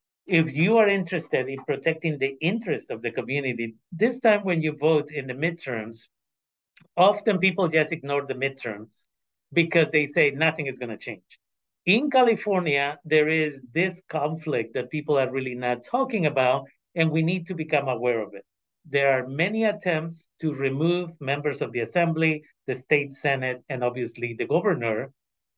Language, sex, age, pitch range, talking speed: Spanish, male, 50-69, 130-180 Hz, 165 wpm